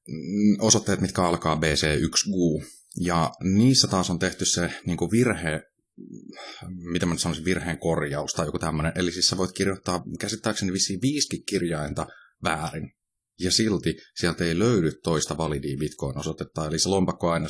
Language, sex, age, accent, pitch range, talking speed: Finnish, male, 30-49, native, 80-95 Hz, 145 wpm